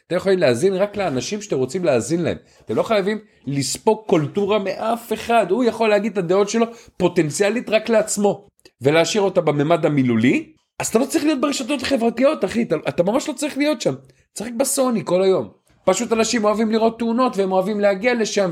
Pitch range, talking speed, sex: 135-210 Hz, 185 wpm, male